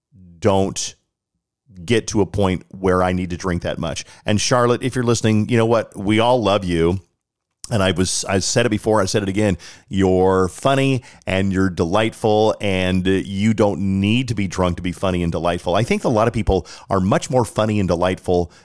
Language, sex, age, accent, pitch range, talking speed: English, male, 40-59, American, 90-115 Hz, 205 wpm